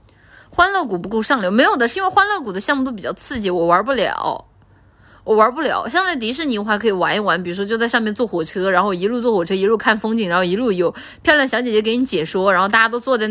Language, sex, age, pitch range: Chinese, female, 20-39, 175-250 Hz